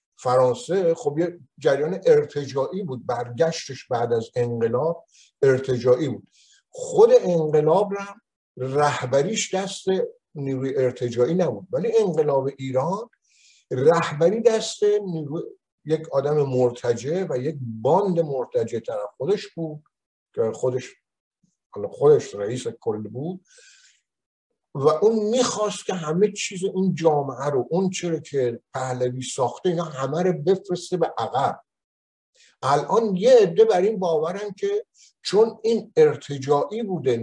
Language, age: Persian, 50-69